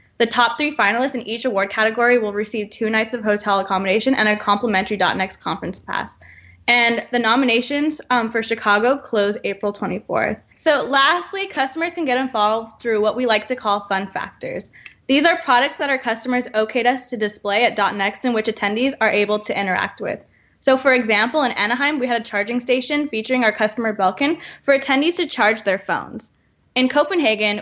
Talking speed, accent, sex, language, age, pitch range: 185 wpm, American, female, English, 10-29, 205-255 Hz